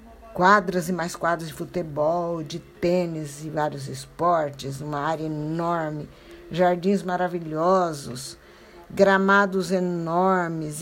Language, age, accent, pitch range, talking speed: Portuguese, 60-79, Brazilian, 170-225 Hz, 100 wpm